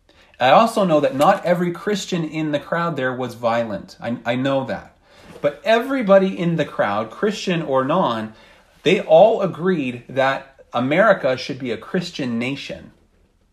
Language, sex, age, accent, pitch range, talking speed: English, male, 40-59, American, 130-190 Hz, 155 wpm